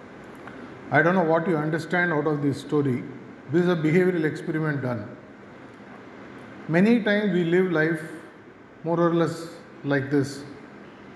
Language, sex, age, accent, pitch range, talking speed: English, male, 50-69, Indian, 145-170 Hz, 140 wpm